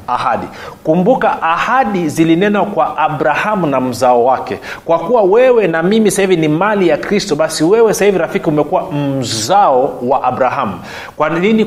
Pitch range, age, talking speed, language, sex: 135-190 Hz, 40-59, 150 wpm, Swahili, male